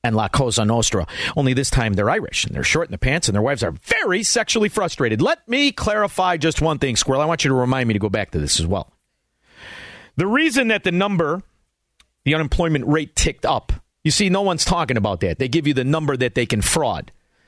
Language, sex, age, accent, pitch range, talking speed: English, male, 40-59, American, 115-175 Hz, 235 wpm